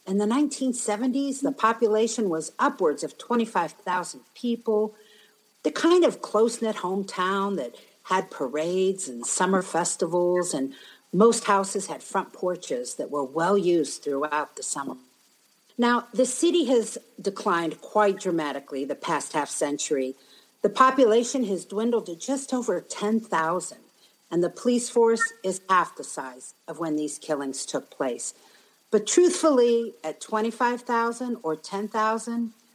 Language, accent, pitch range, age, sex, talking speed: English, American, 165-230 Hz, 50-69, female, 130 wpm